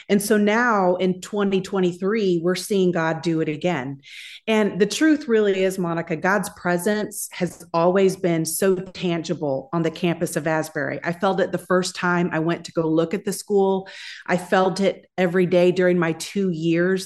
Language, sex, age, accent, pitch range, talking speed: English, female, 40-59, American, 170-200 Hz, 185 wpm